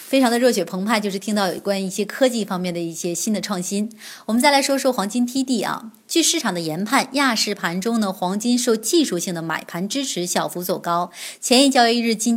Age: 20-39